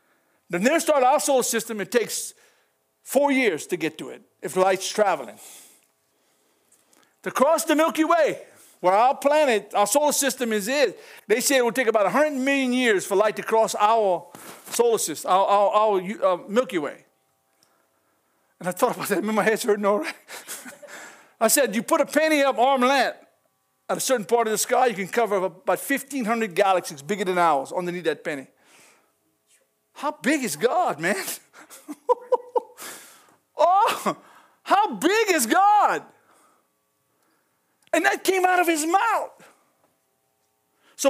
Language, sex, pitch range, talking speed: English, male, 210-330 Hz, 160 wpm